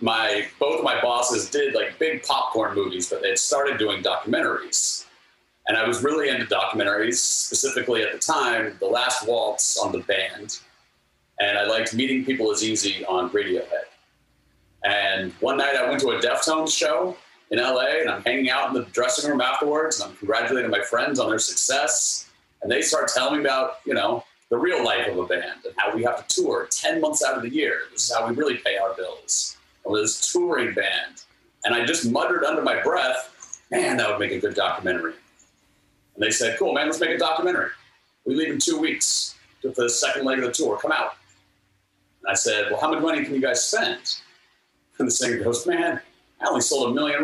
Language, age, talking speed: English, 30-49, 210 wpm